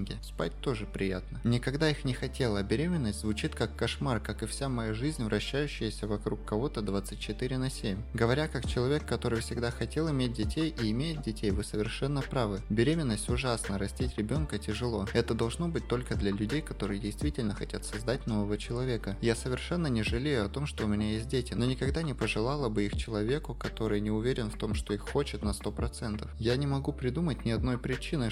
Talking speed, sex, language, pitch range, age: 190 wpm, male, Russian, 105-130 Hz, 20-39